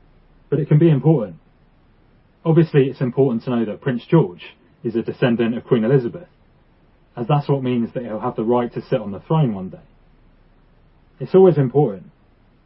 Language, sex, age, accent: English, male, 30-49, British